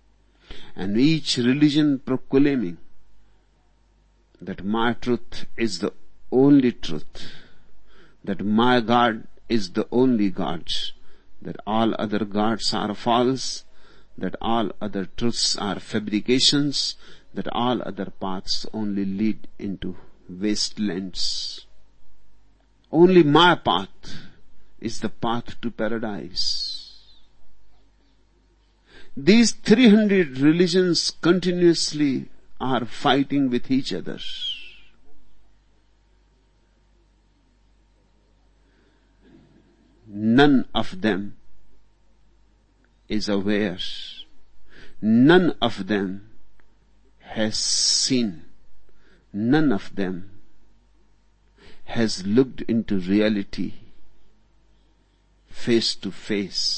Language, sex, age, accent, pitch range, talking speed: Hindi, male, 50-69, native, 100-130 Hz, 80 wpm